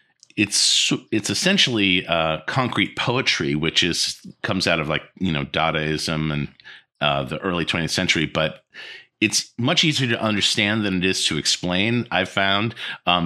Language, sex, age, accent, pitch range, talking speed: English, male, 50-69, American, 80-105 Hz, 160 wpm